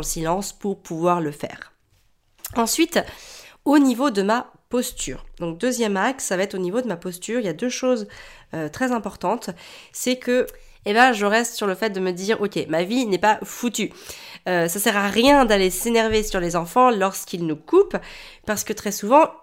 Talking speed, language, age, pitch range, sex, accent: 205 wpm, French, 30-49, 180-245 Hz, female, French